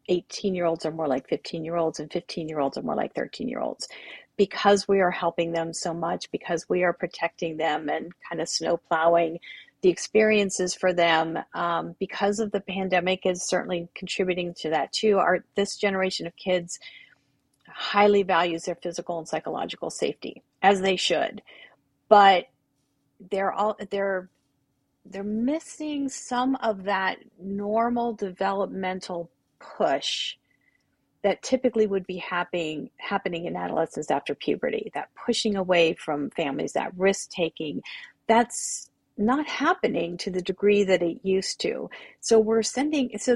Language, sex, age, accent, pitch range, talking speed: English, female, 40-59, American, 170-210 Hz, 150 wpm